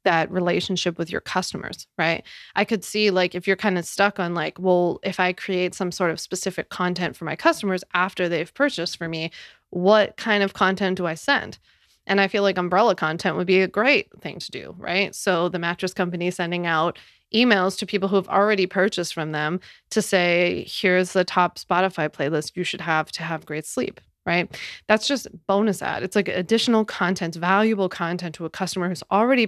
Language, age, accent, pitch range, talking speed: English, 20-39, American, 175-200 Hz, 205 wpm